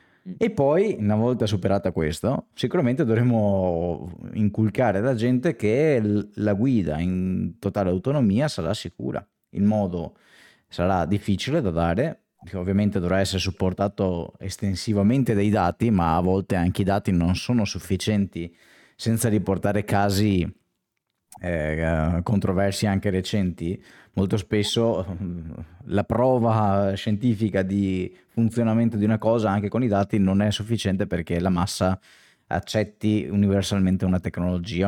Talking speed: 120 wpm